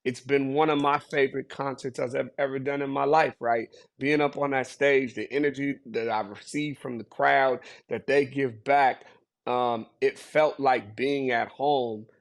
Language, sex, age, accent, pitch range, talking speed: English, male, 30-49, American, 115-145 Hz, 185 wpm